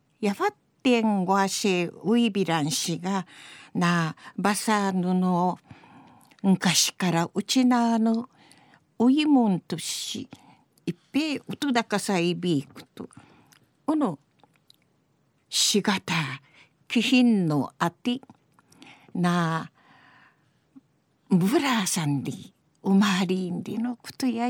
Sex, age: female, 50-69